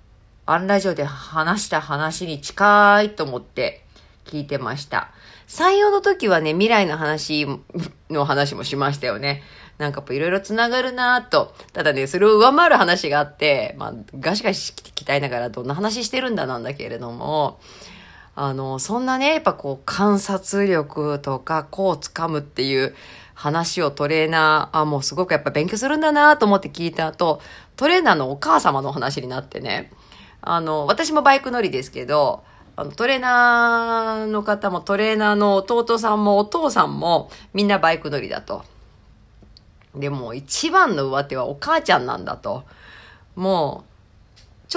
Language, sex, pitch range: Japanese, female, 145-215 Hz